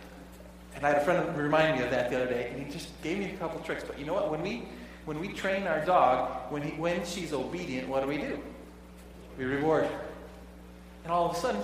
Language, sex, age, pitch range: English, male, 30-49, 130-185 Hz